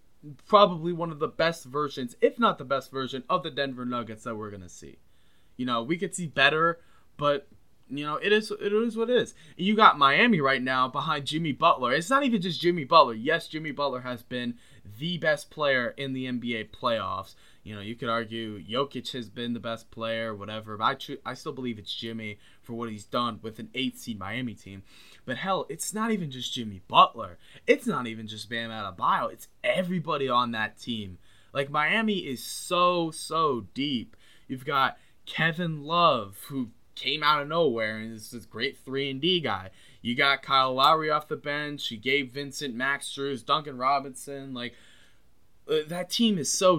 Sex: male